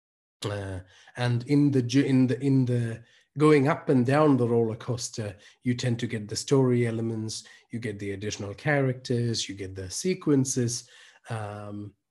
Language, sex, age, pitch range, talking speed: Hindi, male, 30-49, 110-130 Hz, 155 wpm